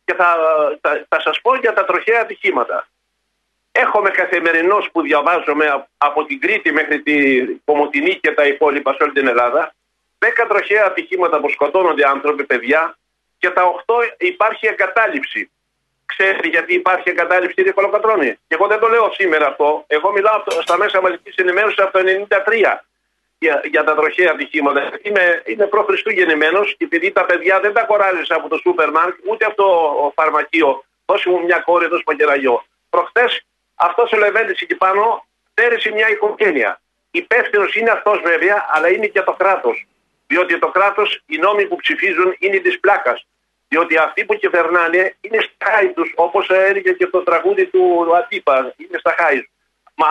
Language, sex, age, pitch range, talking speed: Greek, male, 50-69, 170-230 Hz, 160 wpm